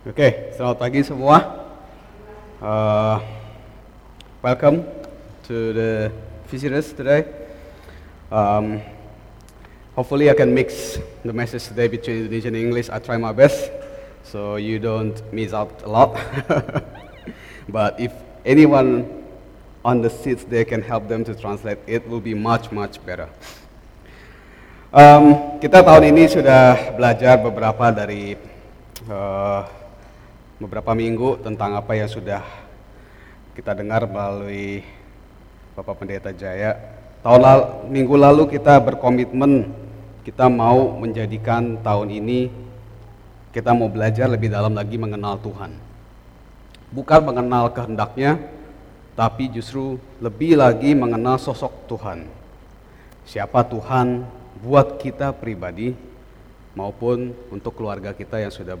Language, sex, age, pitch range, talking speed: English, male, 30-49, 105-125 Hz, 115 wpm